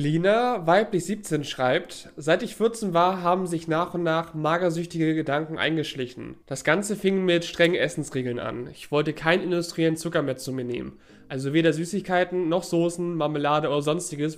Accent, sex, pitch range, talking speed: German, male, 145-175 Hz, 165 wpm